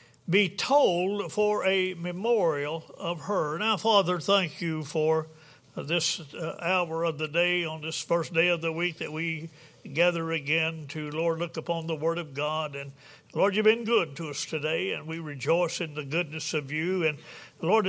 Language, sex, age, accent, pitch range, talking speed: English, male, 60-79, American, 155-180 Hz, 180 wpm